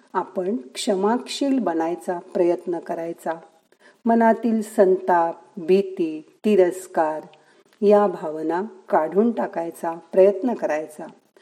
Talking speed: 80 wpm